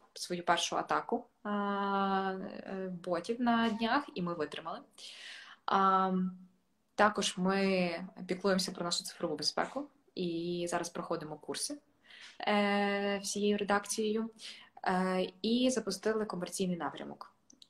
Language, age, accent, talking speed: Ukrainian, 20-39, native, 90 wpm